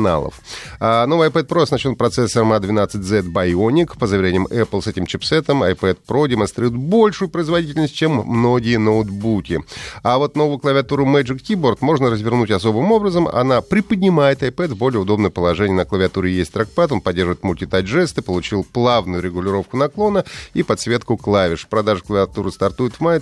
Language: Russian